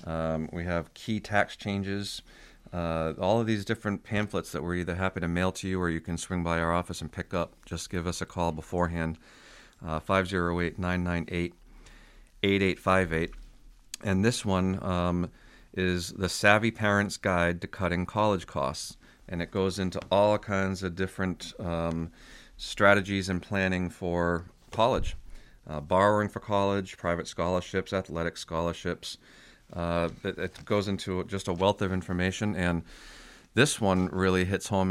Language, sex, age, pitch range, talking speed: English, male, 40-59, 85-100 Hz, 150 wpm